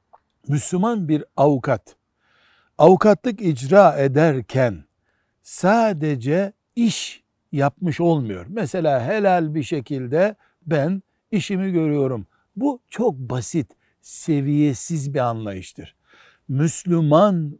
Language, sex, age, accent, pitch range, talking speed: Turkish, male, 60-79, native, 130-180 Hz, 80 wpm